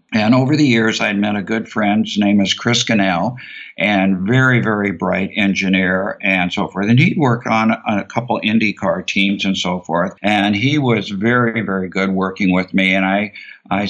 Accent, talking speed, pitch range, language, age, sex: American, 195 wpm, 100-115 Hz, English, 60-79, male